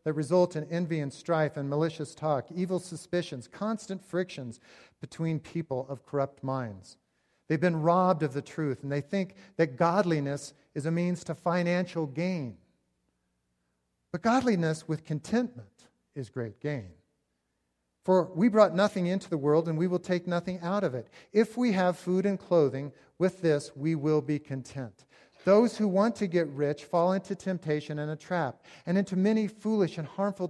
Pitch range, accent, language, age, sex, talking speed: 120-175 Hz, American, English, 50-69, male, 170 wpm